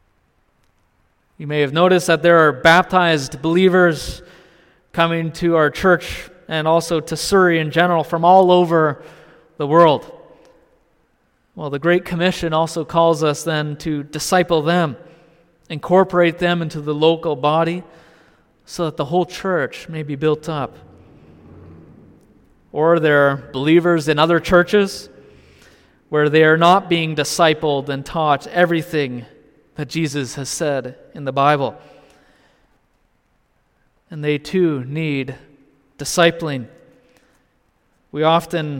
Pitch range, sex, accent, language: 145-175 Hz, male, American, English